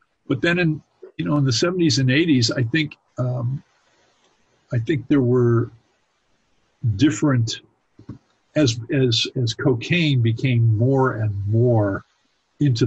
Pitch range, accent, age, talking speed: 110-130 Hz, American, 50-69, 125 wpm